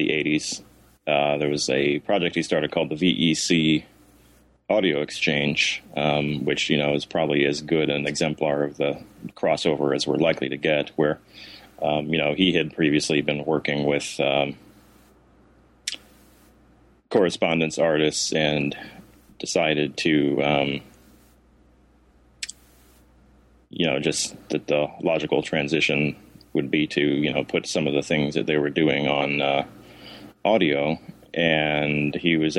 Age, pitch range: 30-49, 70-80 Hz